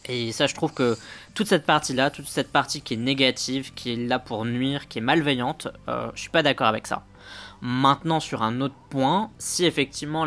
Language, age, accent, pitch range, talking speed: French, 20-39, French, 125-150 Hz, 210 wpm